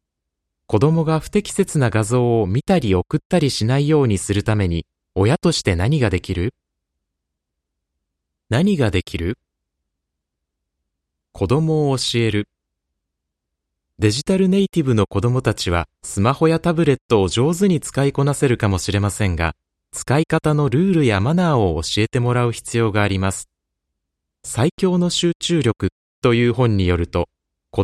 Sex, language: male, Japanese